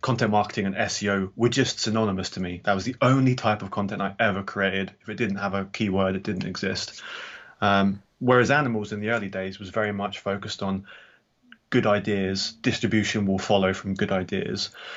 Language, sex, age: English, male, 20-39